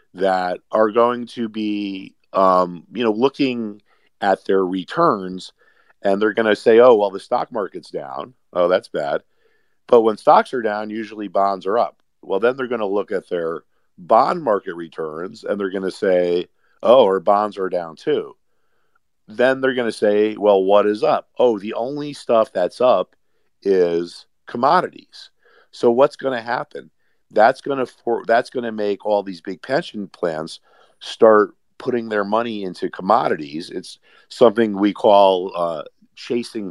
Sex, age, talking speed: male, 50-69, 165 wpm